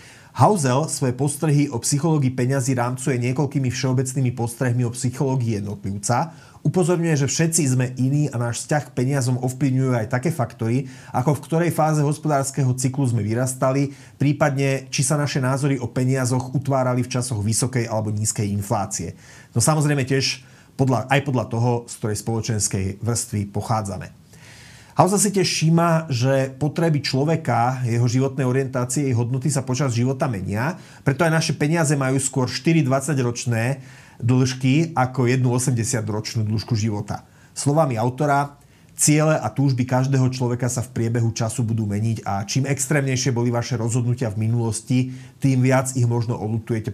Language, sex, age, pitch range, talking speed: Slovak, male, 30-49, 120-140 Hz, 150 wpm